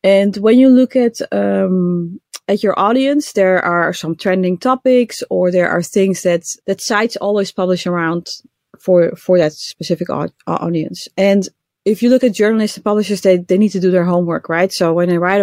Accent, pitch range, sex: Dutch, 180-225 Hz, female